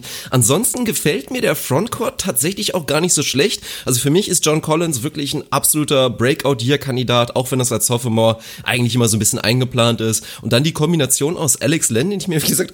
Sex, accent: male, German